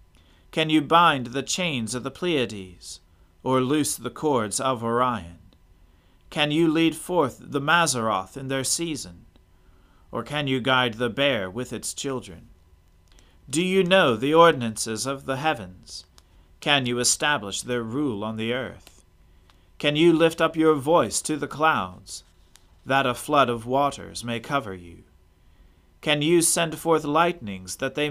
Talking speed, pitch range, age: 155 wpm, 90-150 Hz, 40-59